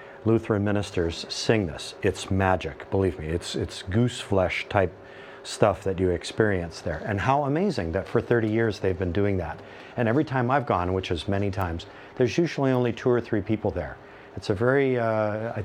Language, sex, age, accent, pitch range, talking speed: English, male, 50-69, American, 95-120 Hz, 190 wpm